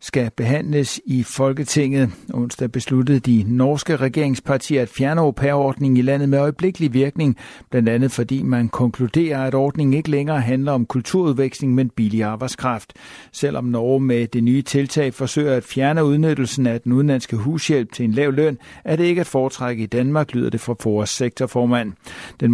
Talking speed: 170 wpm